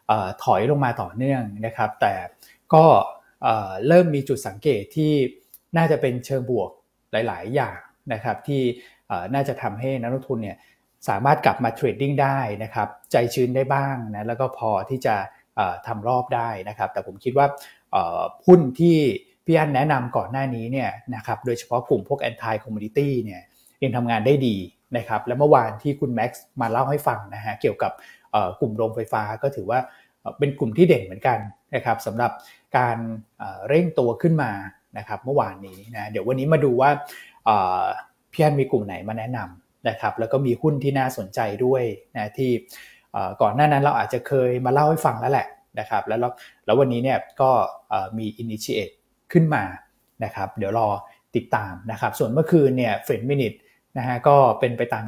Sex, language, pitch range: male, Thai, 115-140 Hz